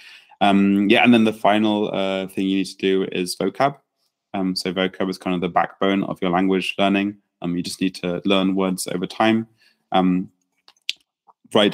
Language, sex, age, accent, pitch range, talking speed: English, male, 20-39, British, 90-105 Hz, 190 wpm